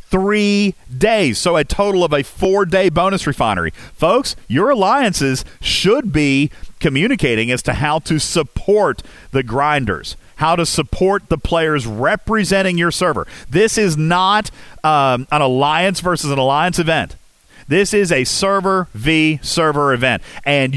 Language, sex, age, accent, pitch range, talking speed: English, male, 40-59, American, 130-185 Hz, 140 wpm